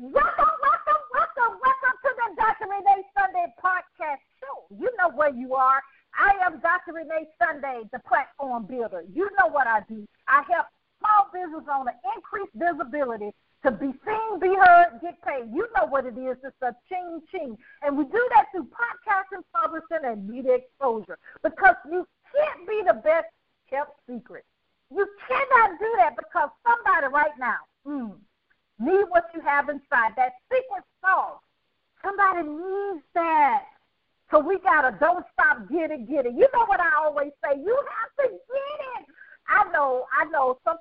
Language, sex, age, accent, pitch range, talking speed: English, female, 50-69, American, 275-390 Hz, 170 wpm